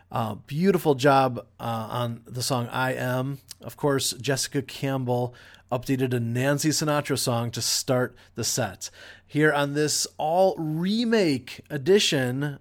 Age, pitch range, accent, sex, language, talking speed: 30-49, 125-160 Hz, American, male, English, 130 wpm